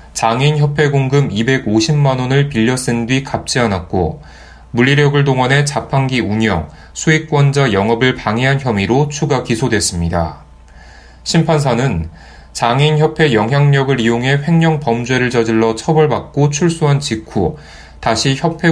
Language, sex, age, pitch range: Korean, male, 20-39, 105-145 Hz